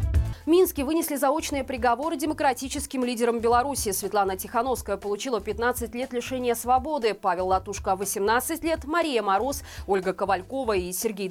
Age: 20-39